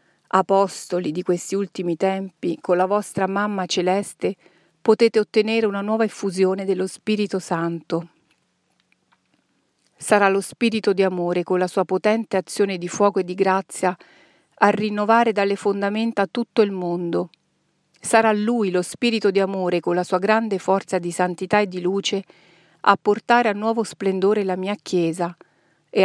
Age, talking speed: 40-59, 150 wpm